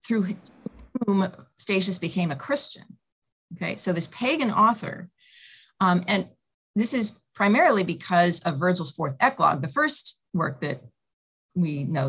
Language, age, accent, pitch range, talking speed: English, 30-49, American, 155-190 Hz, 135 wpm